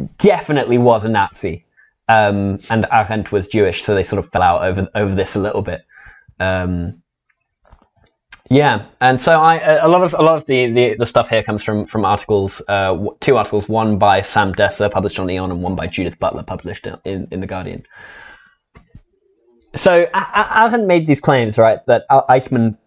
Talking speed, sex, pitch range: 195 wpm, male, 105-150 Hz